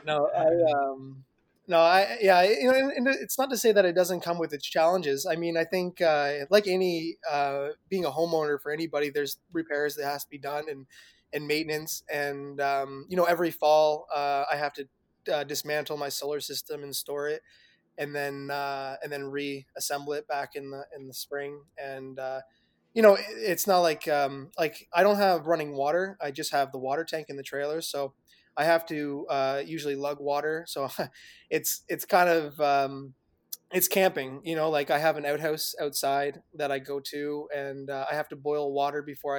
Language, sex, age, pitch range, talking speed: English, male, 20-39, 140-160 Hz, 200 wpm